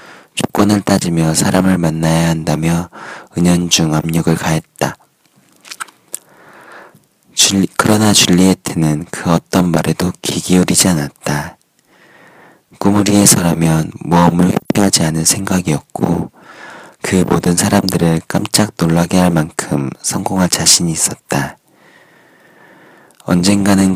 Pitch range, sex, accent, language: 80-100 Hz, male, native, Korean